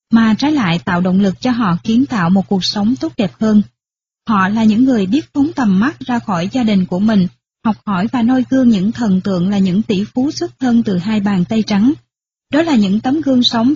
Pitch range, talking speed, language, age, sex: 195-250 Hz, 240 wpm, Vietnamese, 20-39, female